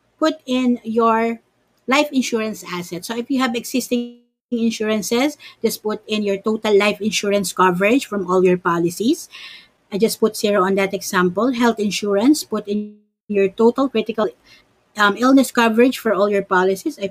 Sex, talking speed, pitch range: female, 160 wpm, 195-255 Hz